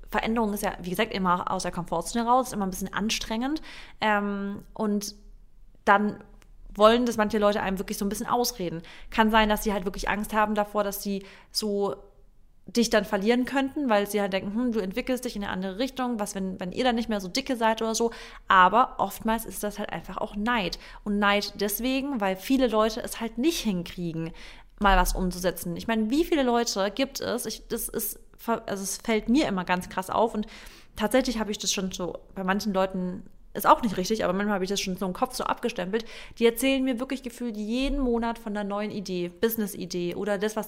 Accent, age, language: German, 30-49, German